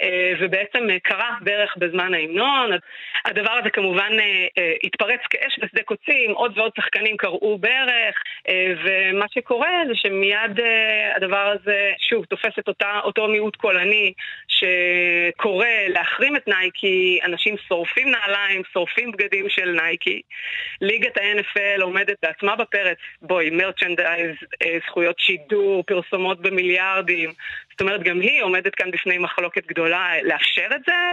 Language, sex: Hebrew, female